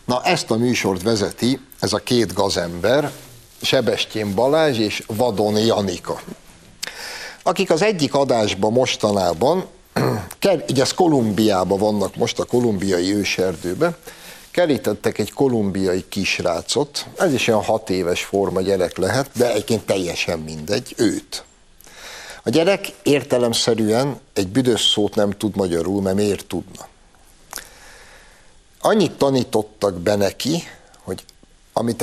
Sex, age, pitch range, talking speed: male, 60-79, 100-130 Hz, 115 wpm